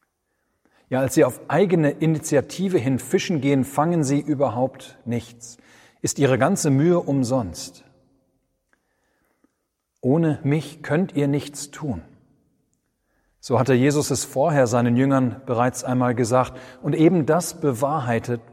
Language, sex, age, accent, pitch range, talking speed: German, male, 40-59, German, 120-150 Hz, 125 wpm